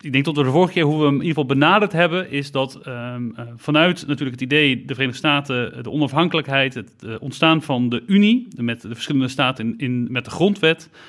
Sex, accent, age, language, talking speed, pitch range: male, Dutch, 40-59, Dutch, 215 wpm, 125-160 Hz